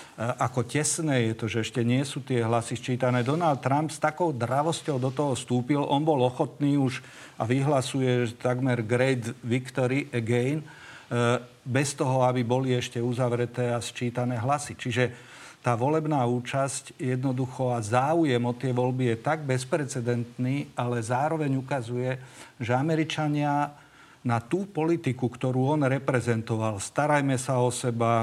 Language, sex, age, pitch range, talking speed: Slovak, male, 50-69, 120-145 Hz, 140 wpm